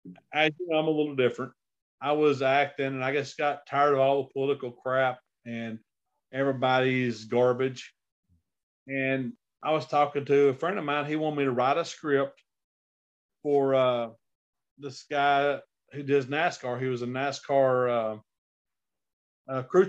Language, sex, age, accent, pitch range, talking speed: English, male, 40-59, American, 130-150 Hz, 150 wpm